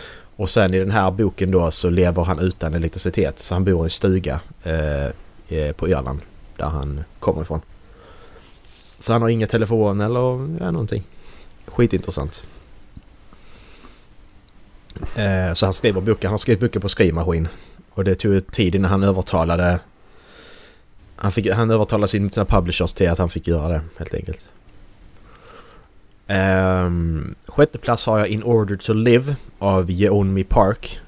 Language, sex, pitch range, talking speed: Swedish, male, 90-105 Hz, 155 wpm